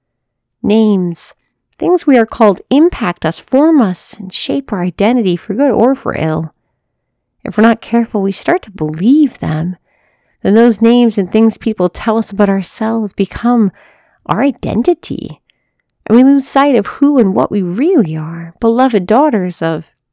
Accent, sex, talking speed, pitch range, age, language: American, female, 160 wpm, 180-245 Hz, 40-59, English